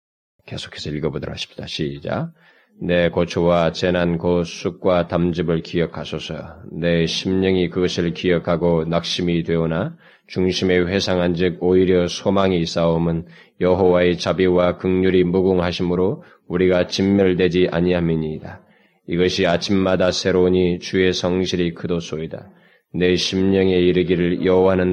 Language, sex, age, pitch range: Korean, male, 20-39, 85-95 Hz